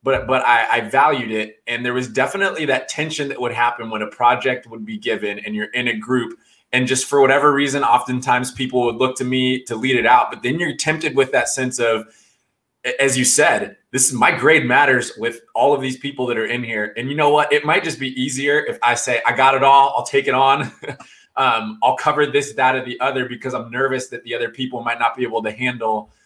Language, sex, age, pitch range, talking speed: English, male, 20-39, 115-135 Hz, 245 wpm